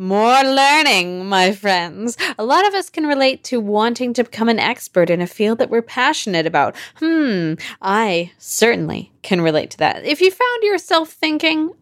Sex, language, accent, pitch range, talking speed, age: female, English, American, 205-295 Hz, 180 wpm, 20-39